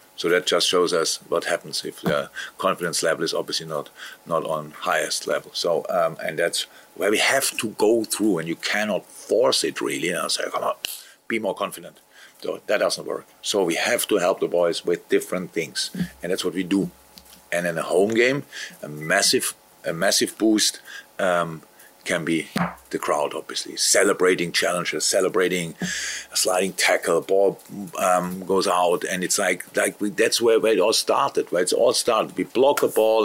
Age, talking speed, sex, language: 50-69, 195 wpm, male, English